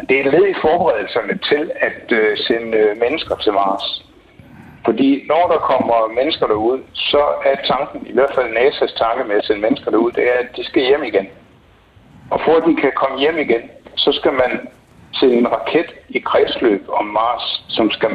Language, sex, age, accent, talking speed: Danish, male, 60-79, native, 190 wpm